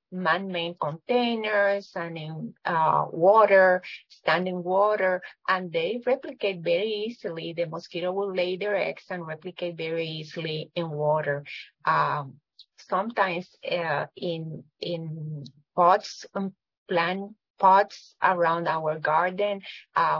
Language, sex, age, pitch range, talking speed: English, female, 30-49, 165-205 Hz, 120 wpm